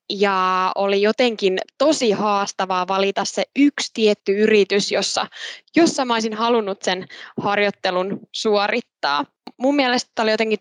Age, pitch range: 20-39, 195-240 Hz